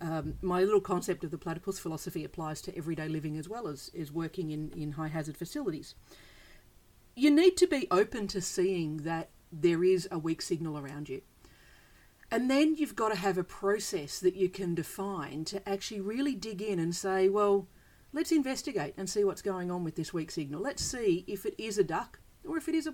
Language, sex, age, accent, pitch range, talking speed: English, female, 40-59, Australian, 165-205 Hz, 210 wpm